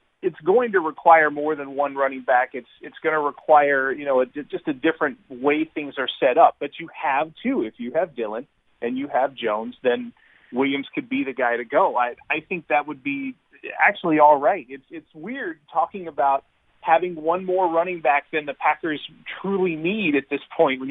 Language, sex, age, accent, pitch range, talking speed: English, male, 30-49, American, 140-180 Hz, 210 wpm